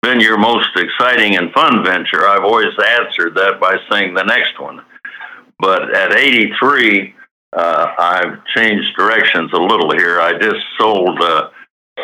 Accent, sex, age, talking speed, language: American, male, 60-79, 145 wpm, English